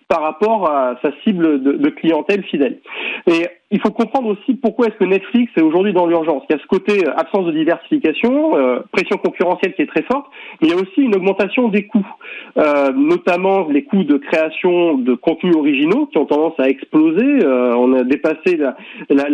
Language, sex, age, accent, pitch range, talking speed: French, male, 30-49, French, 165-240 Hz, 205 wpm